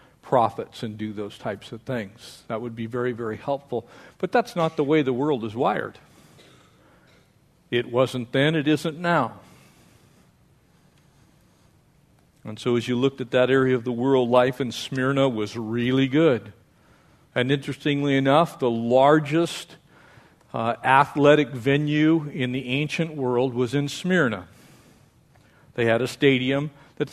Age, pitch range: 50-69, 120-150 Hz